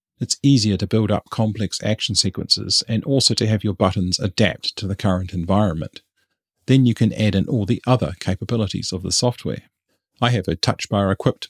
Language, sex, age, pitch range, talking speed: English, male, 40-59, 95-125 Hz, 195 wpm